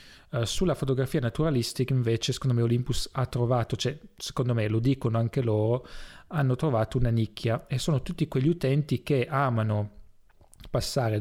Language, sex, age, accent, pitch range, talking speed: English, male, 30-49, Italian, 110-135 Hz, 150 wpm